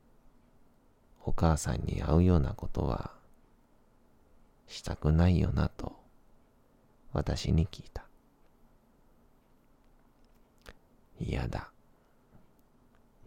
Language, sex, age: Japanese, male, 40-59